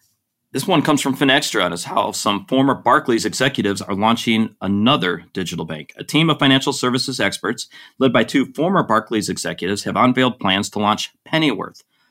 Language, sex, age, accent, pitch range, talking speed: English, male, 40-59, American, 100-125 Hz, 175 wpm